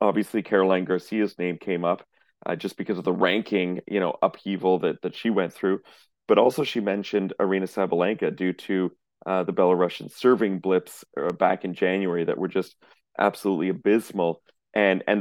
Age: 40-59